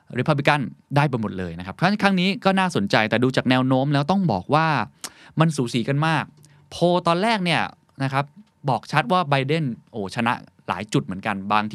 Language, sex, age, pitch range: Thai, male, 20-39, 110-150 Hz